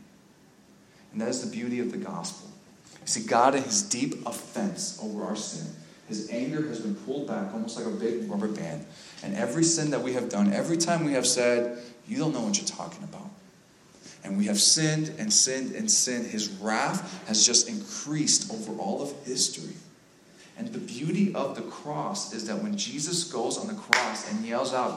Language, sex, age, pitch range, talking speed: English, male, 30-49, 150-200 Hz, 200 wpm